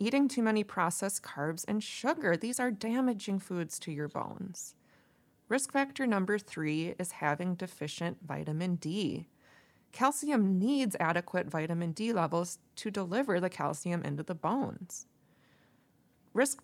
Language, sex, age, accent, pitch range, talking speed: English, female, 20-39, American, 160-210 Hz, 135 wpm